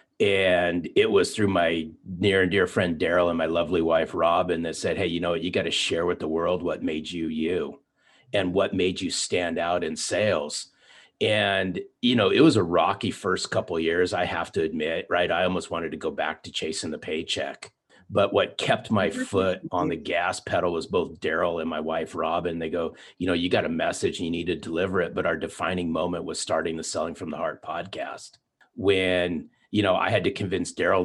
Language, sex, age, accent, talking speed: English, male, 30-49, American, 220 wpm